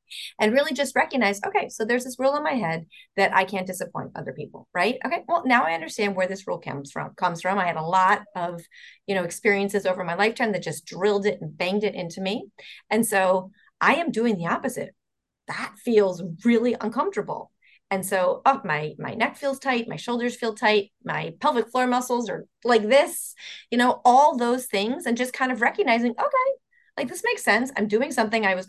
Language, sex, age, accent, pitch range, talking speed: English, female, 30-49, American, 185-250 Hz, 210 wpm